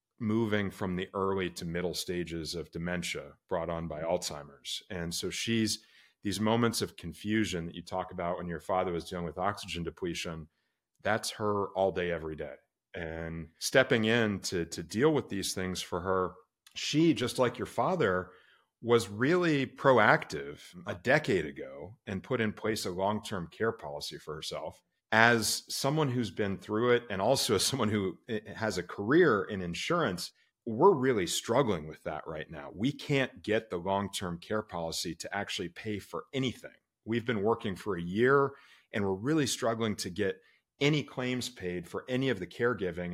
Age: 40-59